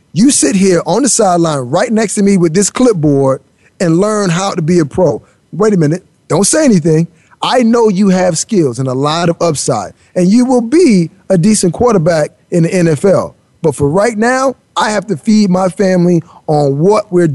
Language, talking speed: English, 205 wpm